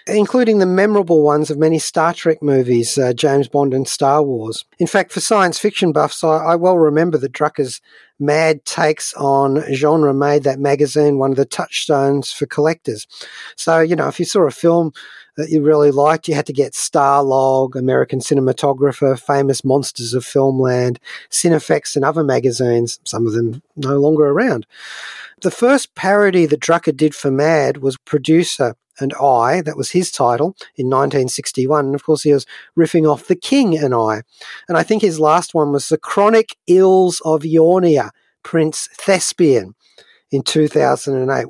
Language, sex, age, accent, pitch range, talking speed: English, male, 40-59, Australian, 135-170 Hz, 170 wpm